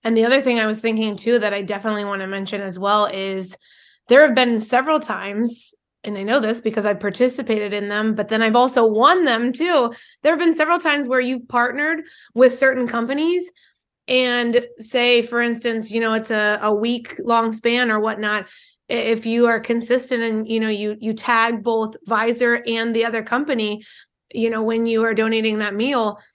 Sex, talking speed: female, 200 wpm